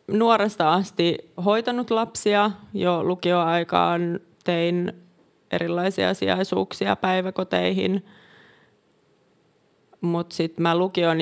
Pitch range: 160-185 Hz